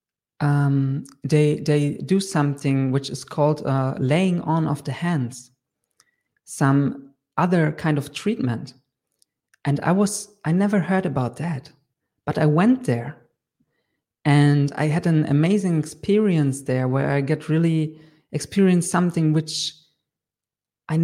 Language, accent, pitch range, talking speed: English, German, 135-165 Hz, 130 wpm